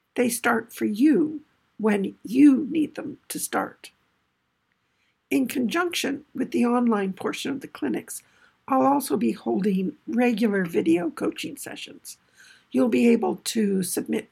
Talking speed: 135 wpm